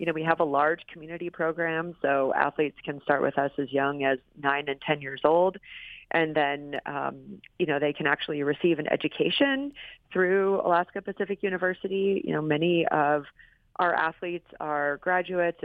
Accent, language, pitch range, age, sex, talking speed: American, English, 150-180 Hz, 30-49, female, 175 wpm